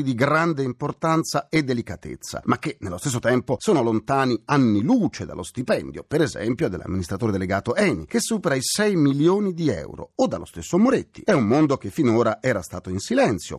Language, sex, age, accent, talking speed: Italian, male, 40-59, native, 180 wpm